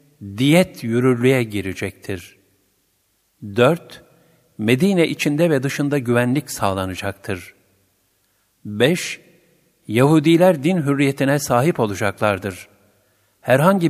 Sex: male